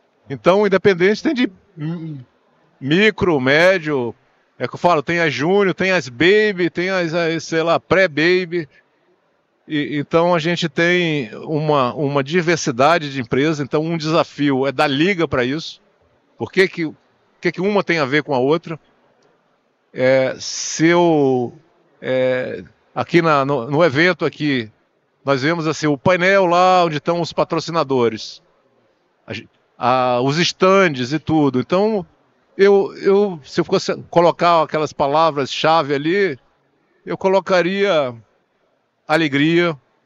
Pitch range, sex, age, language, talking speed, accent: 145-180 Hz, male, 50-69, Portuguese, 135 wpm, Brazilian